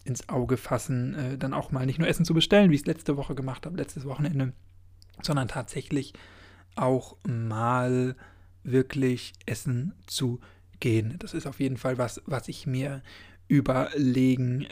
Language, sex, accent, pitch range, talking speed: German, male, German, 125-150 Hz, 160 wpm